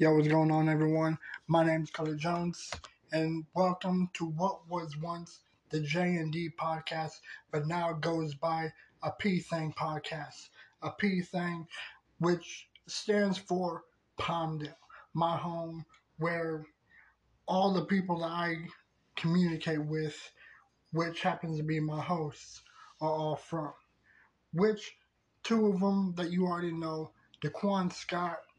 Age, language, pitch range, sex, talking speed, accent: 20-39, English, 160-185 Hz, male, 140 wpm, American